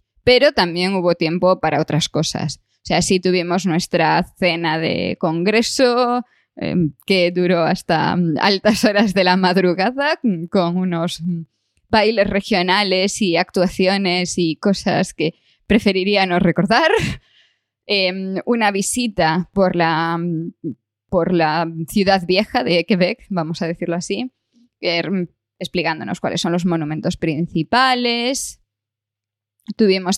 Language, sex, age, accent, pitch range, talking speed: Spanish, female, 20-39, Spanish, 170-200 Hz, 115 wpm